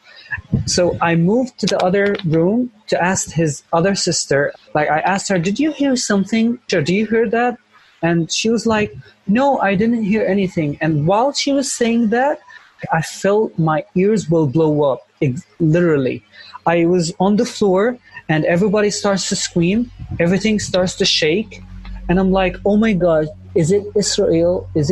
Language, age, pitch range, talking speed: English, 30-49, 145-195 Hz, 175 wpm